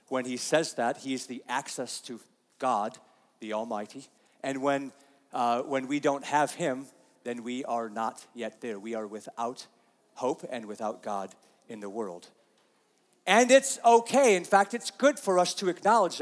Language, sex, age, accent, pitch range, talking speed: English, male, 40-59, American, 130-180 Hz, 175 wpm